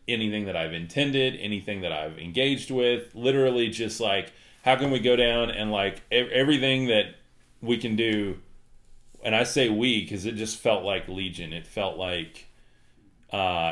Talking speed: 170 wpm